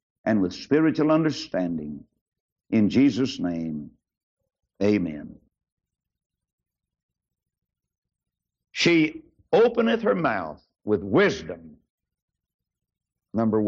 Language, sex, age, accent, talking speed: English, male, 60-79, American, 65 wpm